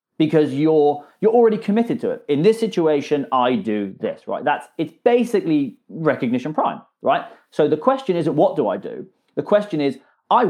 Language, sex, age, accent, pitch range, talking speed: English, male, 30-49, British, 140-210 Hz, 185 wpm